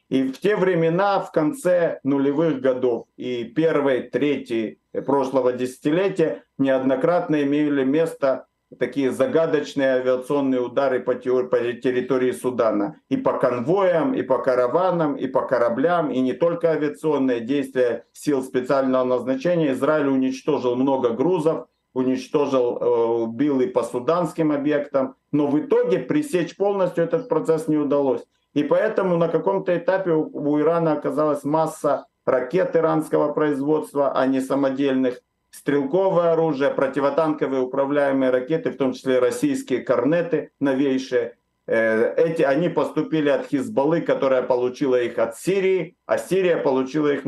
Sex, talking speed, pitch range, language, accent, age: male, 125 wpm, 130-165 Hz, Russian, native, 50-69